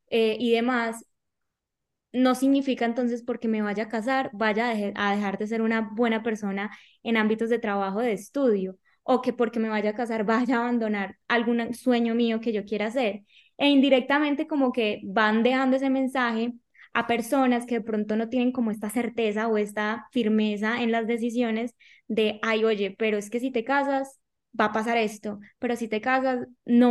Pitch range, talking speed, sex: 220-245 Hz, 185 wpm, female